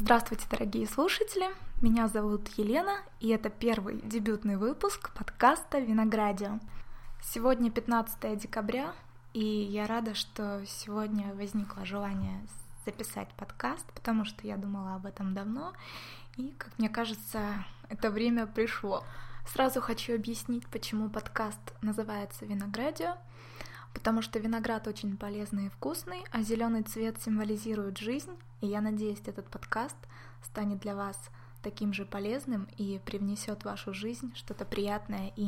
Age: 20-39